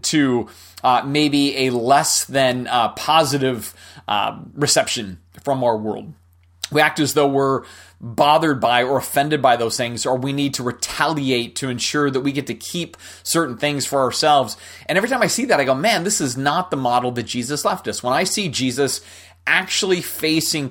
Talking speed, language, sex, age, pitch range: 190 wpm, English, male, 30-49, 120-150 Hz